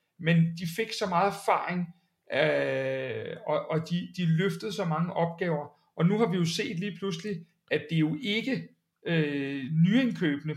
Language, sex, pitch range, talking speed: Danish, male, 160-190 Hz, 160 wpm